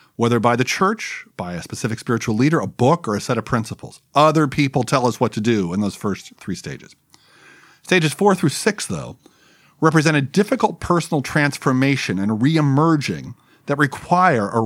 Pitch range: 115-165 Hz